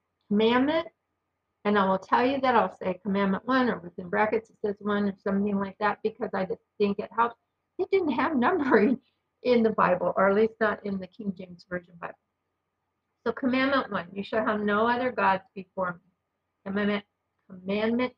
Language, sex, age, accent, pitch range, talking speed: English, female, 50-69, American, 195-225 Hz, 185 wpm